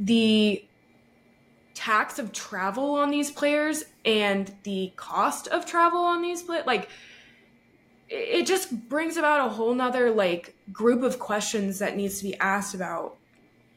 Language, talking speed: English, 145 wpm